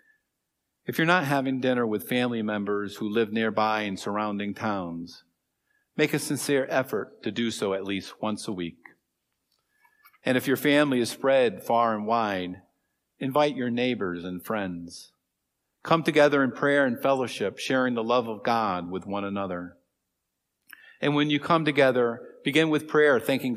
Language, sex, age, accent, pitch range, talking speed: English, male, 50-69, American, 100-135 Hz, 160 wpm